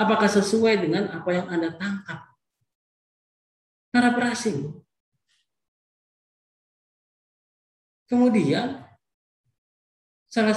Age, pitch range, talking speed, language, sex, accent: 40-59, 120-175 Hz, 60 wpm, Indonesian, male, native